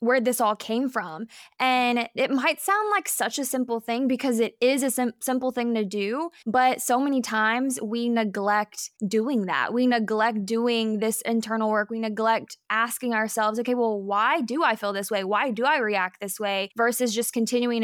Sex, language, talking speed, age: female, English, 190 wpm, 10-29